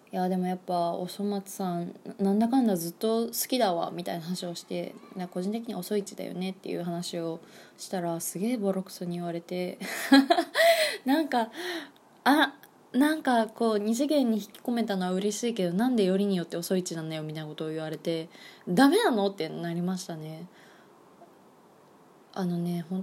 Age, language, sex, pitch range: 20-39, Japanese, female, 180-255 Hz